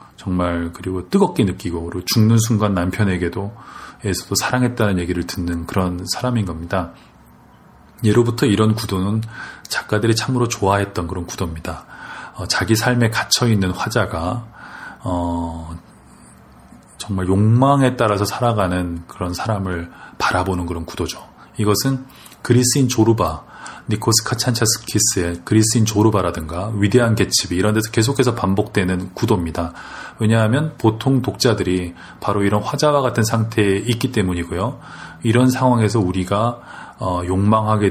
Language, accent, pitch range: Korean, native, 90-115 Hz